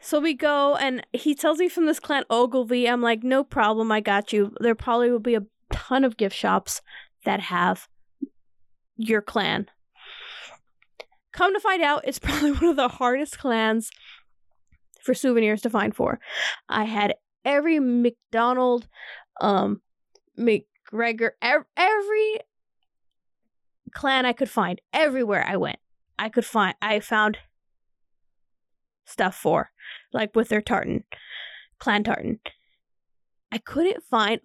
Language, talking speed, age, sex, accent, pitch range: English, 135 wpm, 10-29, female, American, 220-300 Hz